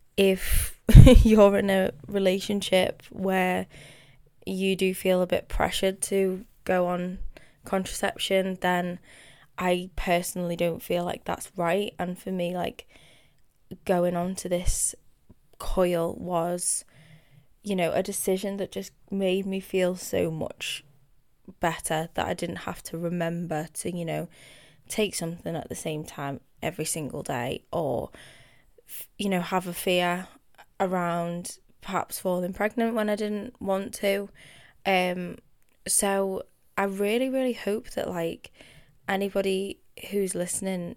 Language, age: English, 10-29